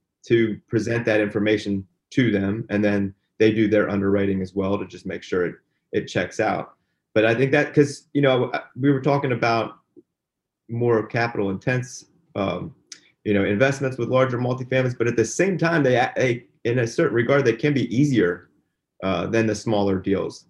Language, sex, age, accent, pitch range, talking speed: English, male, 30-49, American, 100-125 Hz, 185 wpm